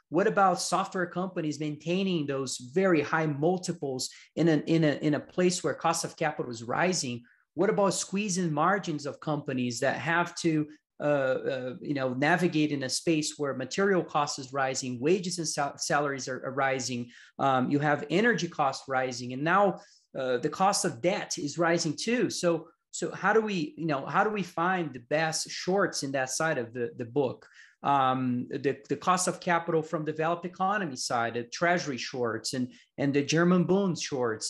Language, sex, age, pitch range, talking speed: English, male, 30-49, 135-170 Hz, 185 wpm